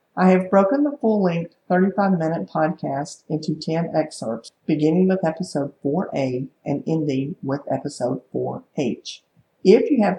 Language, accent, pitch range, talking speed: English, American, 155-195 Hz, 130 wpm